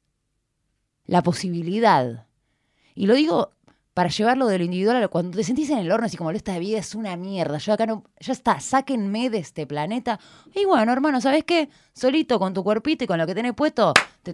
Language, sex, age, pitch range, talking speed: Spanish, female, 20-39, 140-215 Hz, 220 wpm